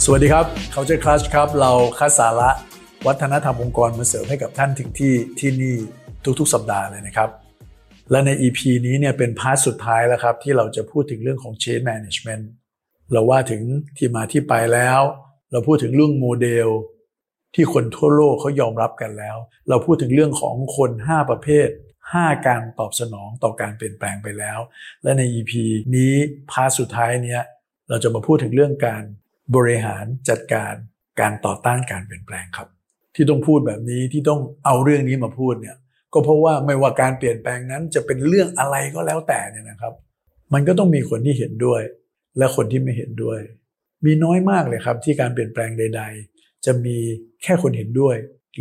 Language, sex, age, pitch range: Thai, male, 60-79, 115-145 Hz